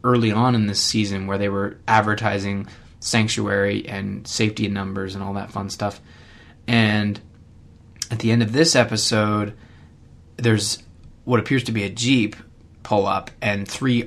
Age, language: 20-39, English